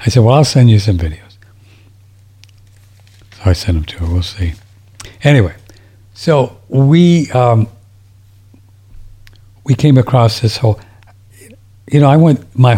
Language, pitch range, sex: English, 100-130 Hz, male